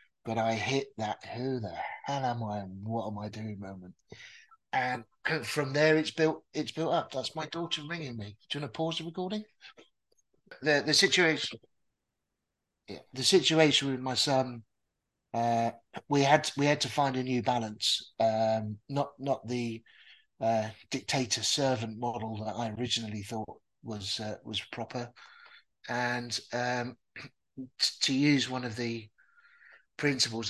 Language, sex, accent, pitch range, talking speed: English, male, British, 110-135 Hz, 155 wpm